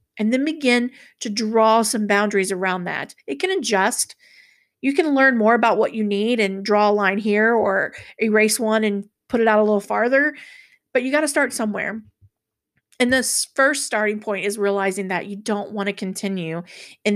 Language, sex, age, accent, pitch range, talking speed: English, female, 40-59, American, 195-230 Hz, 190 wpm